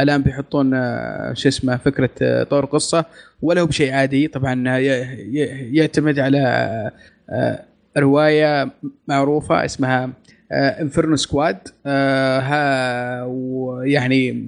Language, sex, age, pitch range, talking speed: Arabic, male, 20-39, 130-150 Hz, 80 wpm